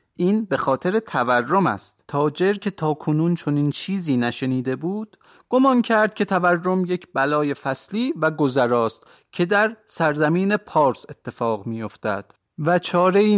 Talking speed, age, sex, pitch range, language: 150 wpm, 30-49, male, 130-195 Hz, Persian